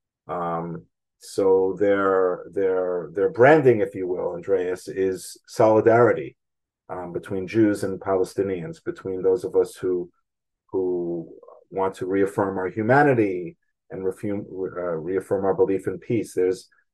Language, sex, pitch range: Greek, male, 95-160 Hz